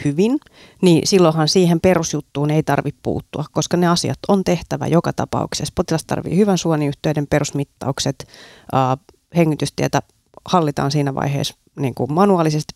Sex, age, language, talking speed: female, 30-49, Finnish, 130 wpm